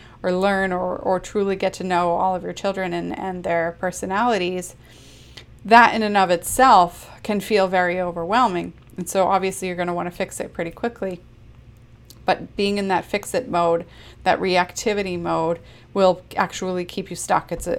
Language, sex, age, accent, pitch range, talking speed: English, female, 30-49, American, 175-200 Hz, 180 wpm